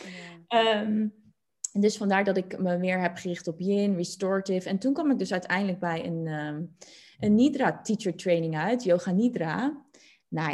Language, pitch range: Dutch, 175-215 Hz